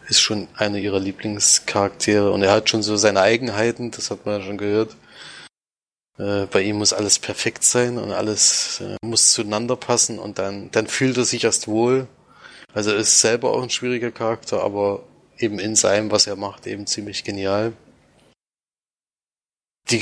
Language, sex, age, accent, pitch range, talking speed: German, male, 30-49, German, 105-115 Hz, 175 wpm